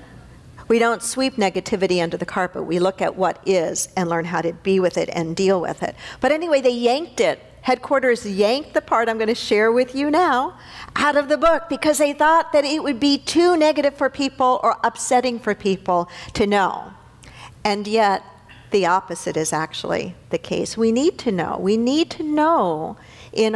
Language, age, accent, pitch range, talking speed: English, 50-69, American, 180-265 Hz, 195 wpm